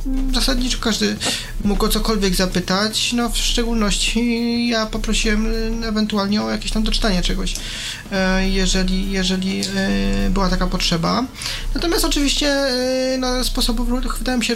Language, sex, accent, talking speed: Polish, male, native, 120 wpm